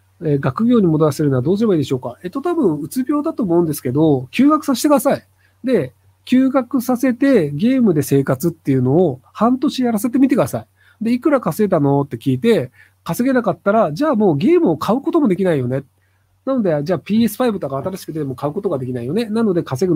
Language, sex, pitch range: Japanese, male, 135-225 Hz